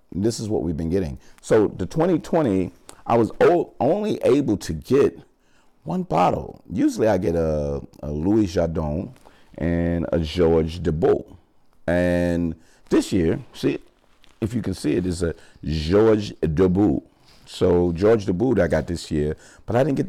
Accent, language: American, English